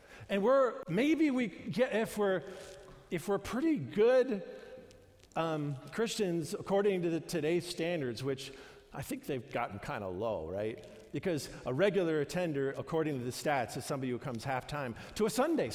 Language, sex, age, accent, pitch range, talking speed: English, male, 50-69, American, 135-190 Hz, 165 wpm